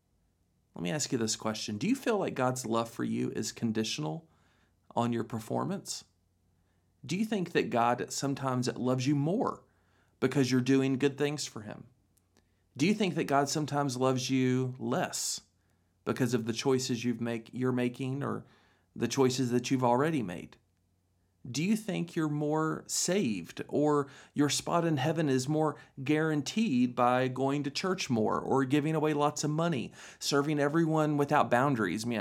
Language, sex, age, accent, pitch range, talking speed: English, male, 40-59, American, 115-150 Hz, 165 wpm